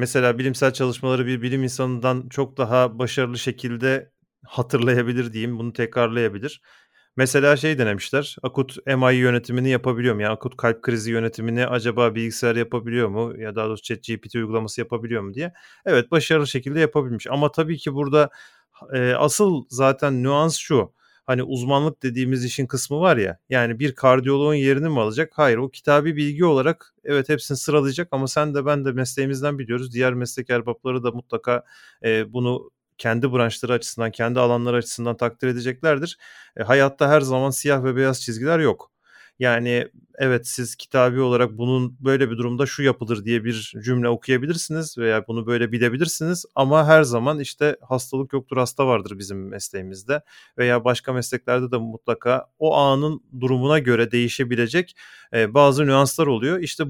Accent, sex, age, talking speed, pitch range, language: native, male, 30-49, 155 wpm, 120-140 Hz, Turkish